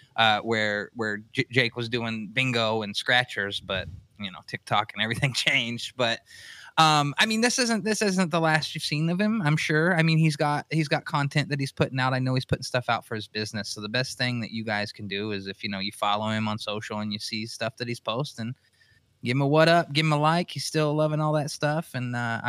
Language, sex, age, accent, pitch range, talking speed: English, male, 20-39, American, 110-140 Hz, 255 wpm